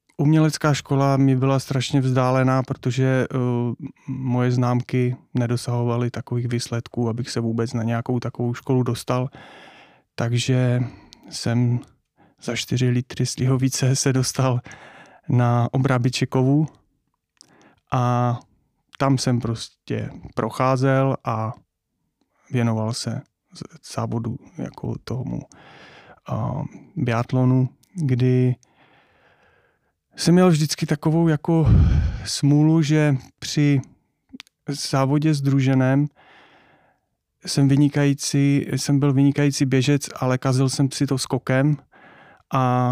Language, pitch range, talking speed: Czech, 120-140 Hz, 95 wpm